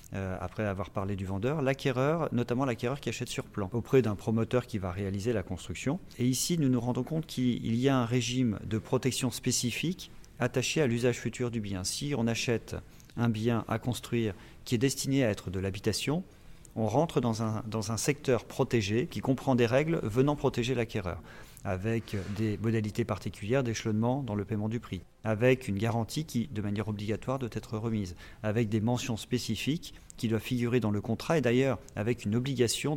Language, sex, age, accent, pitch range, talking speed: French, male, 40-59, French, 105-130 Hz, 185 wpm